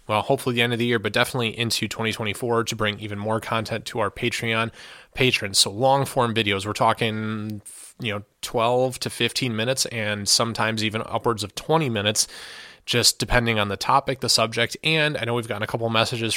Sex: male